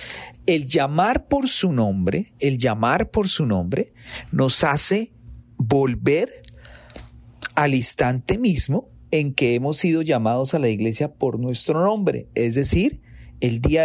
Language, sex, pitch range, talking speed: Spanish, male, 115-165 Hz, 135 wpm